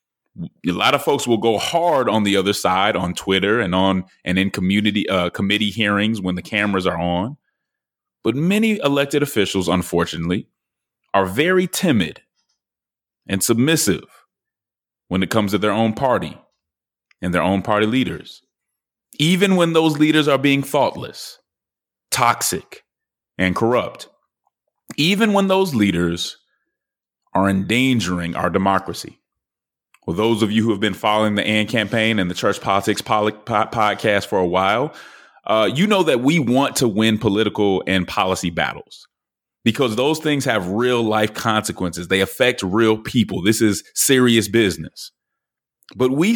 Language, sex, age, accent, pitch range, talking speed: English, male, 30-49, American, 95-130 Hz, 150 wpm